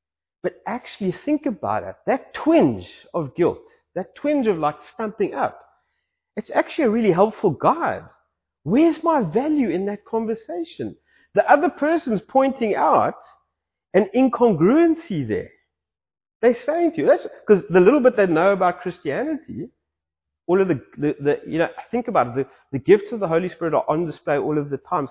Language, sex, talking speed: English, male, 170 wpm